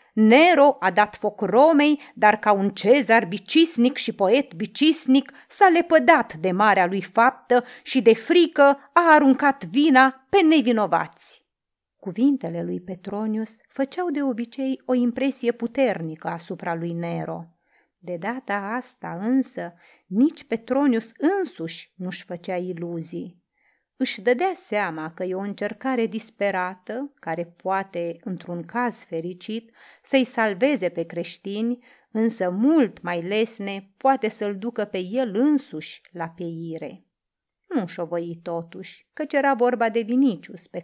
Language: Romanian